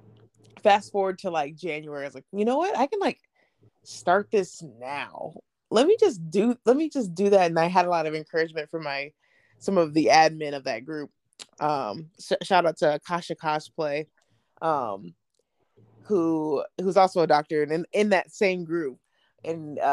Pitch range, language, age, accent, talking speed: 155-185 Hz, English, 20-39, American, 185 wpm